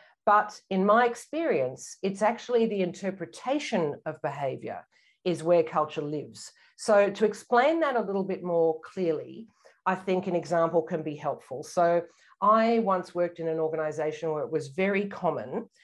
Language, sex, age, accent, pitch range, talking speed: English, female, 50-69, Australian, 155-210 Hz, 160 wpm